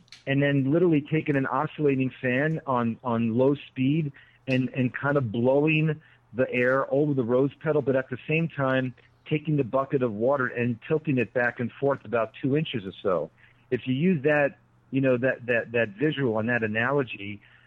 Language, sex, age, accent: English, male, 50-69, American